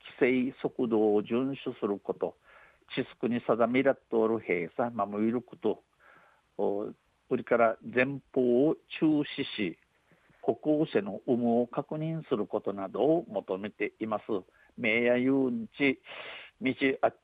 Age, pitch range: 50-69, 110-135 Hz